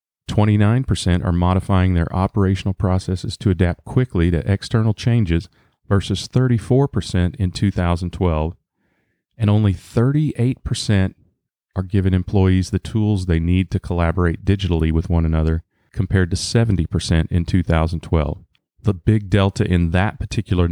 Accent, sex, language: American, male, English